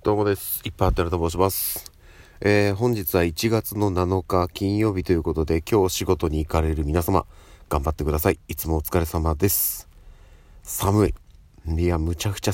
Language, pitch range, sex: Japanese, 80-95 Hz, male